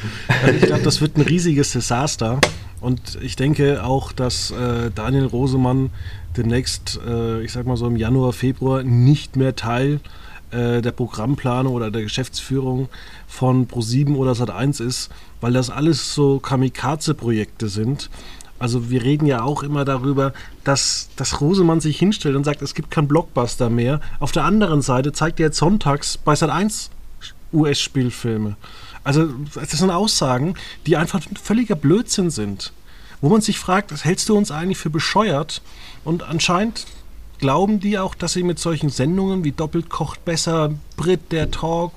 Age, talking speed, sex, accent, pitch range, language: 30-49, 160 wpm, male, German, 125-165 Hz, German